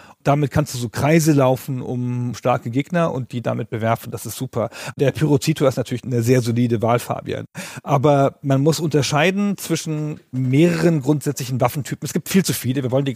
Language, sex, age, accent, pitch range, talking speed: German, male, 40-59, German, 130-160 Hz, 185 wpm